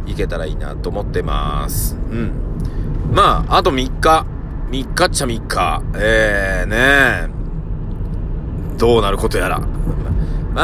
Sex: male